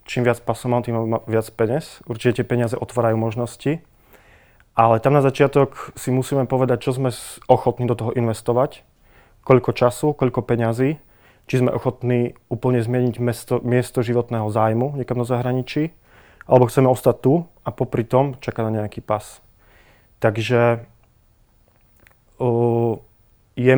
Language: Czech